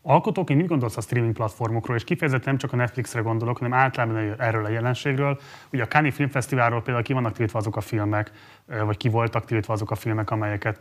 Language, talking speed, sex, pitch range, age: Hungarian, 205 wpm, male, 110-130 Hz, 30-49